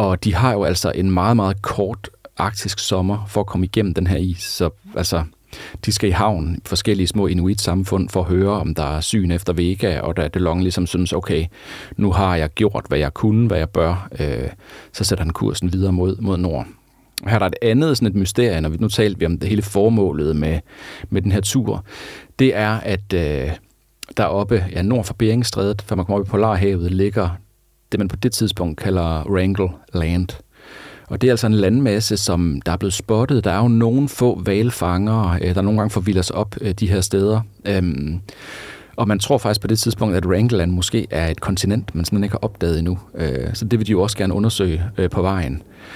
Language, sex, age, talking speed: Danish, male, 40-59, 215 wpm